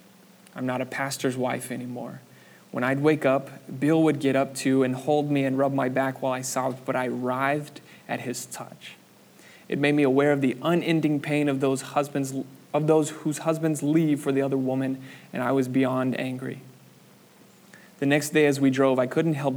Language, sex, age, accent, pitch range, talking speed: English, male, 20-39, American, 130-150 Hz, 200 wpm